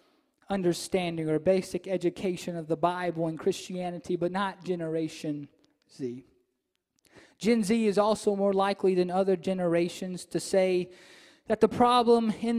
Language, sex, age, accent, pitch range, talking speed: English, male, 20-39, American, 180-235 Hz, 135 wpm